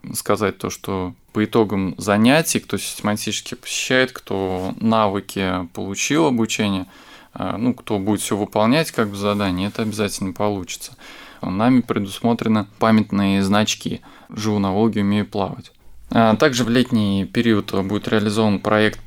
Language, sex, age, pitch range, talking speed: Russian, male, 20-39, 100-115 Hz, 125 wpm